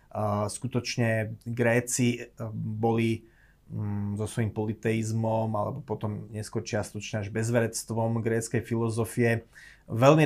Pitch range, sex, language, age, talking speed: 110-125 Hz, male, Slovak, 30-49, 90 wpm